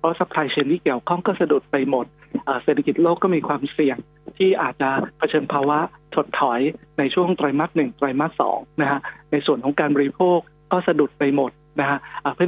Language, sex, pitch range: Thai, male, 145-175 Hz